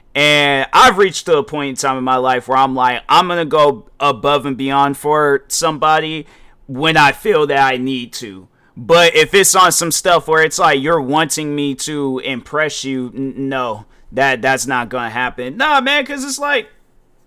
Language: English